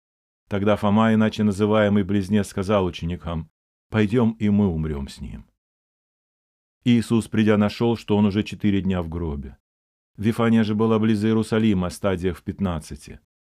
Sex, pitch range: male, 80-110 Hz